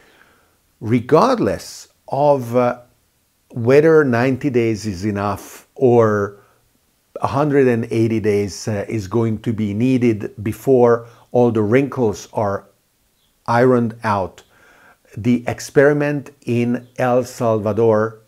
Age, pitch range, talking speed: 50-69, 100-125 Hz, 95 wpm